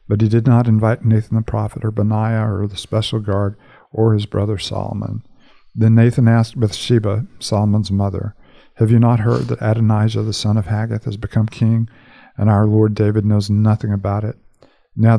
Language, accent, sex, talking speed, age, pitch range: English, American, male, 180 wpm, 50-69, 105-120 Hz